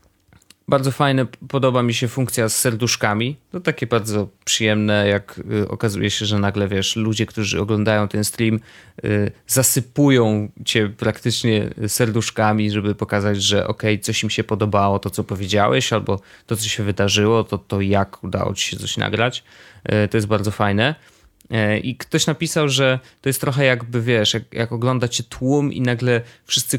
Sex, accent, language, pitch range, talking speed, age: male, native, Polish, 105-125 Hz, 165 wpm, 20-39